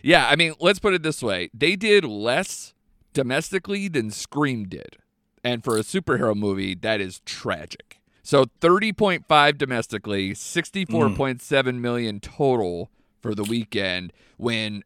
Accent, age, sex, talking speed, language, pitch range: American, 30-49, male, 135 wpm, English, 100-145 Hz